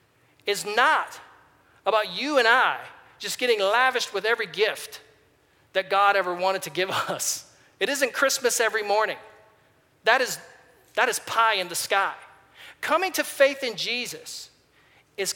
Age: 40-59